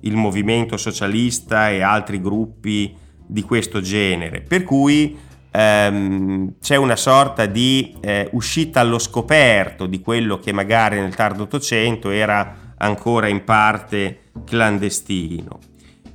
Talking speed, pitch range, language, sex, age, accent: 120 wpm, 100-120 Hz, Italian, male, 30-49, native